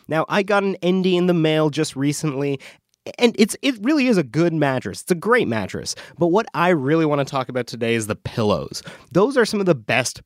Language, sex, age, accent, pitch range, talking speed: English, male, 30-49, American, 130-170 Hz, 235 wpm